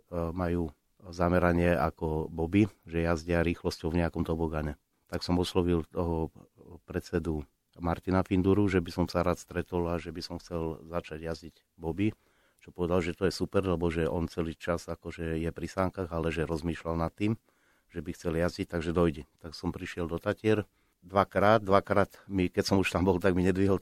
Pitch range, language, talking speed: 85-95 Hz, Slovak, 180 wpm